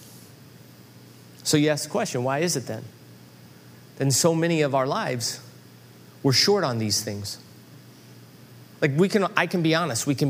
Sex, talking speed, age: male, 170 wpm, 30-49